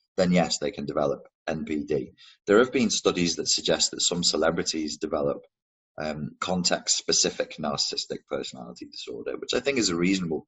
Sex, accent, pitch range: male, British, 75-100 Hz